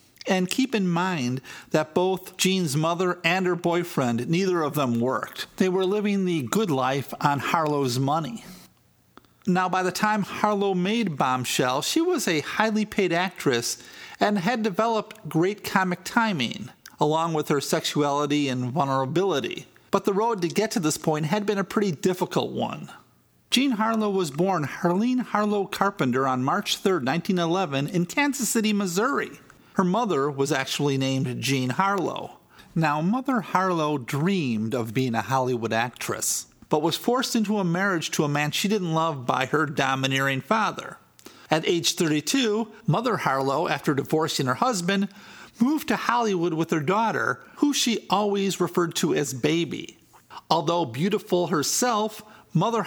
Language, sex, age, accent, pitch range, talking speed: English, male, 50-69, American, 150-205 Hz, 155 wpm